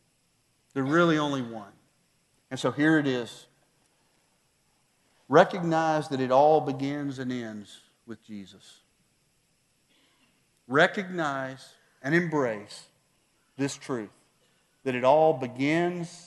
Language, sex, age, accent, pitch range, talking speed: English, male, 40-59, American, 140-225 Hz, 100 wpm